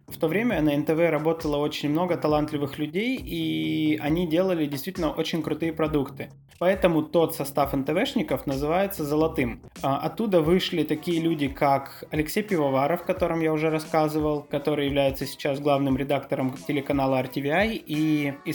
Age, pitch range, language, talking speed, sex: 20-39, 140-165 Hz, Russian, 140 wpm, male